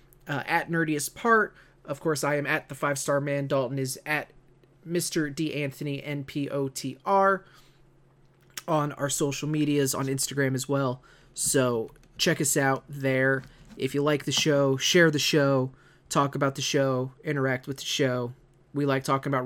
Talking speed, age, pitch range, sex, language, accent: 165 wpm, 30-49, 135-165 Hz, male, English, American